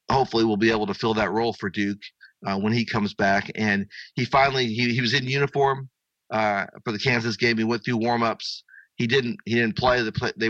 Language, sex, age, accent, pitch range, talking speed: English, male, 40-59, American, 105-120 Hz, 230 wpm